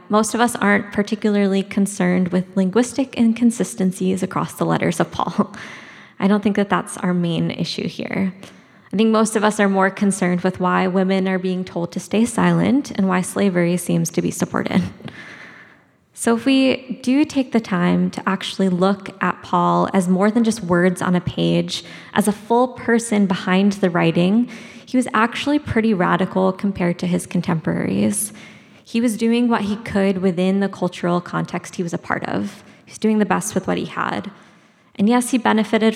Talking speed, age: 185 wpm, 20-39